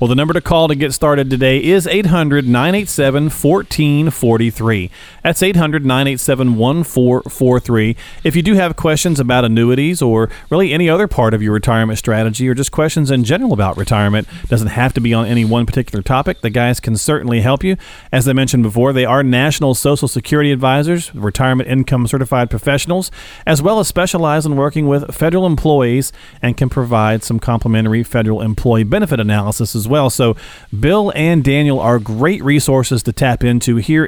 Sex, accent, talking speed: male, American, 170 wpm